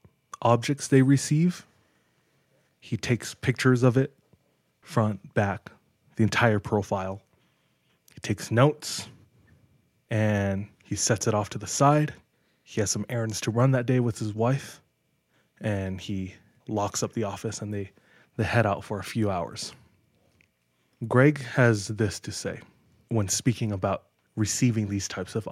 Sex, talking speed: male, 145 wpm